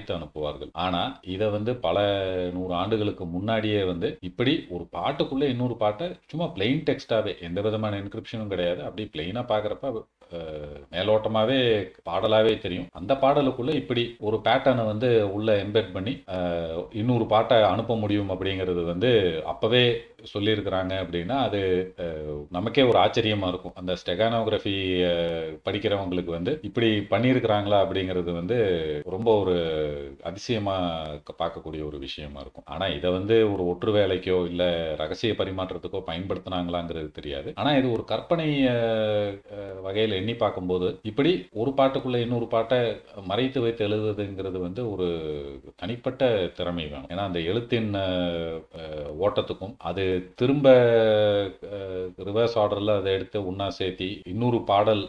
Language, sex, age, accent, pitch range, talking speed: Tamil, male, 40-59, native, 90-115 Hz, 95 wpm